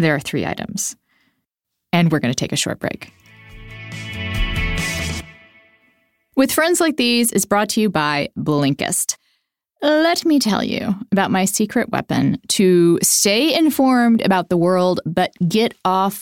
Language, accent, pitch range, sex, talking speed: English, American, 165-235 Hz, female, 145 wpm